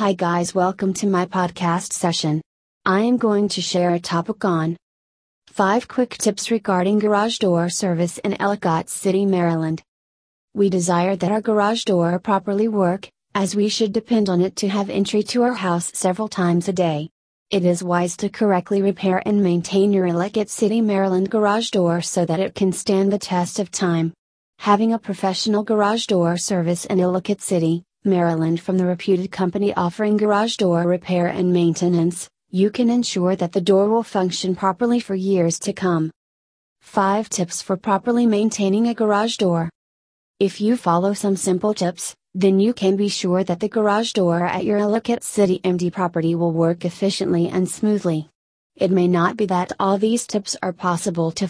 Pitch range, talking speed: 175-205 Hz, 175 wpm